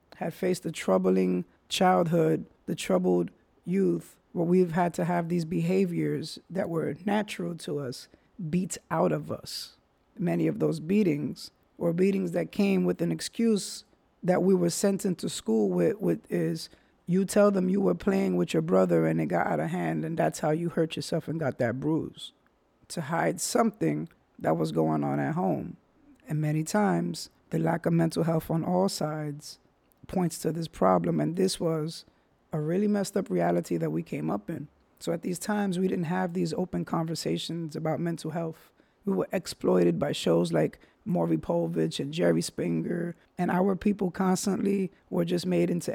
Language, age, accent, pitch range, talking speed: English, 50-69, American, 155-190 Hz, 180 wpm